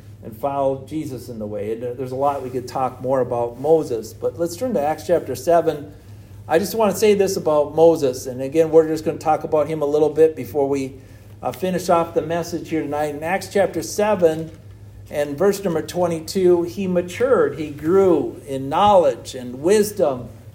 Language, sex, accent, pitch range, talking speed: English, male, American, 115-170 Hz, 195 wpm